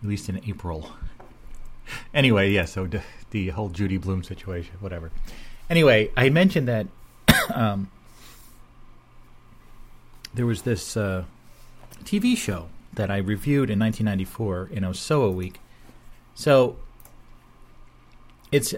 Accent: American